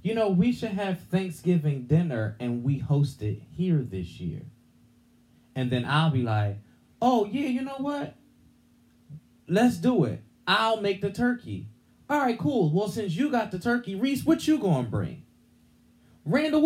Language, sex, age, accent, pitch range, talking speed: English, male, 30-49, American, 115-195 Hz, 165 wpm